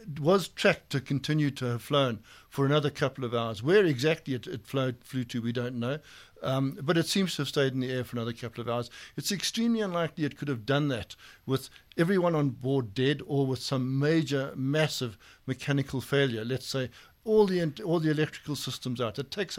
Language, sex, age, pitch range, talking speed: English, male, 60-79, 130-160 Hz, 205 wpm